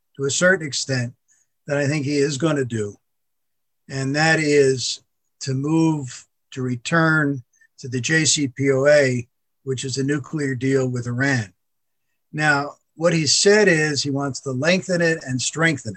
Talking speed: 155 wpm